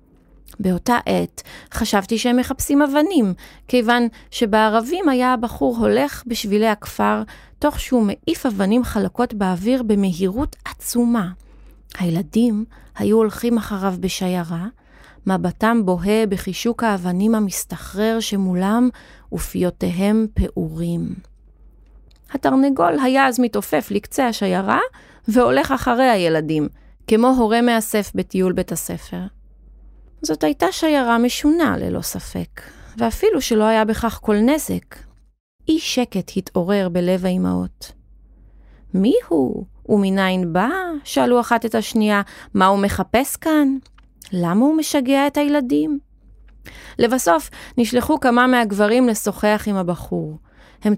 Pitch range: 185-245 Hz